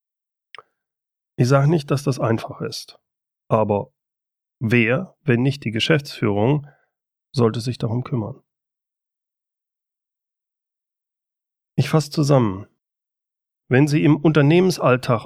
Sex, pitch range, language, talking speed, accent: male, 115-145 Hz, German, 95 wpm, German